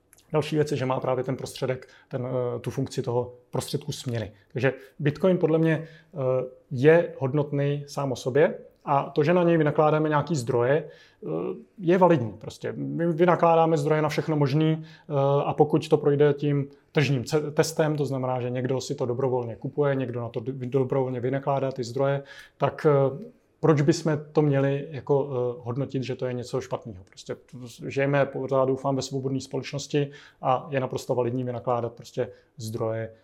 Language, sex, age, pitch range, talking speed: Slovak, male, 30-49, 125-150 Hz, 155 wpm